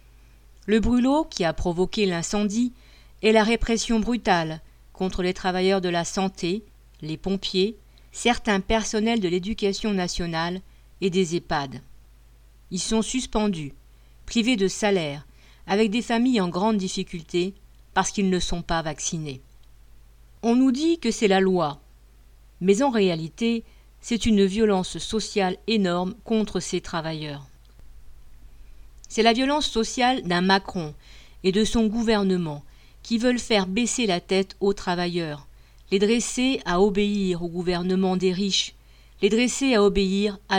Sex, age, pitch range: female, 50-69, 170-225 Hz